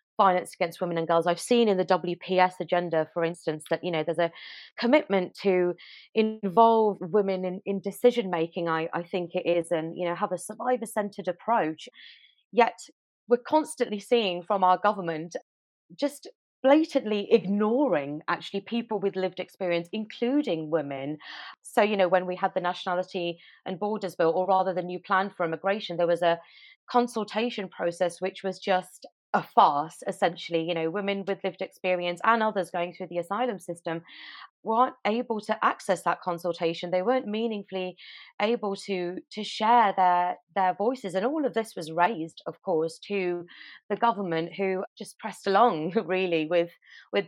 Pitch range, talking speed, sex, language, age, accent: 175-220 Hz, 165 wpm, female, English, 30-49, British